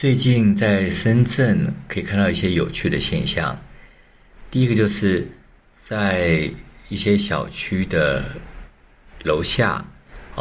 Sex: male